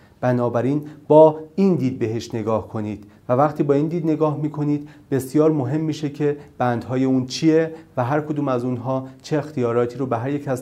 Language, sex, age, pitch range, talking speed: Persian, male, 40-59, 125-160 Hz, 185 wpm